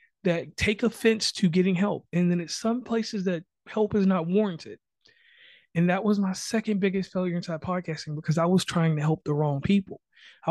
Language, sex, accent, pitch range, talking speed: English, male, American, 165-205 Hz, 200 wpm